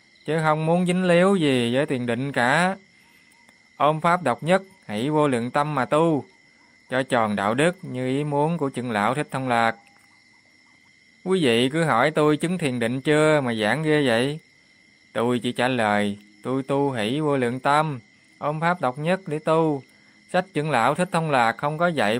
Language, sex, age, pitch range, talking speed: Vietnamese, male, 20-39, 120-160 Hz, 190 wpm